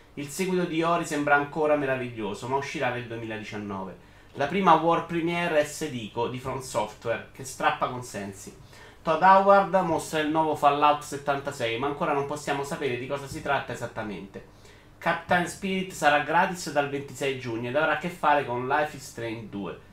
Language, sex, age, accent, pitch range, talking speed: Italian, male, 30-49, native, 120-165 Hz, 170 wpm